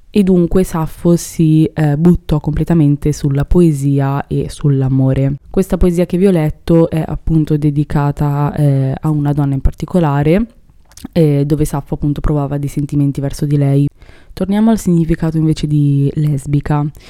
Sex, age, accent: female, 20-39, native